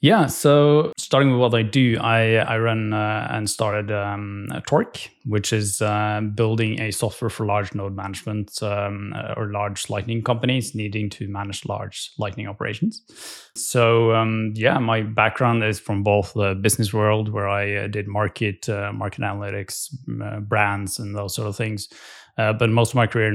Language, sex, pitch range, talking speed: English, male, 100-115 Hz, 175 wpm